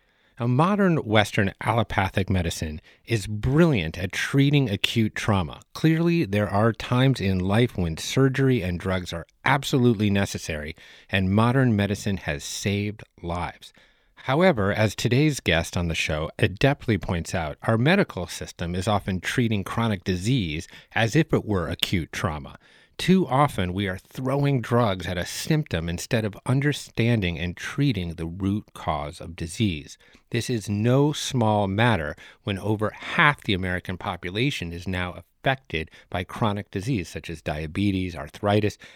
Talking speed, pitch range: 145 wpm, 90-125 Hz